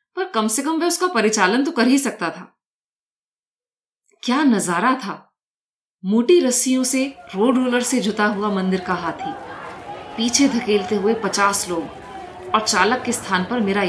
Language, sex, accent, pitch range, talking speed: Hindi, female, native, 215-305 Hz, 160 wpm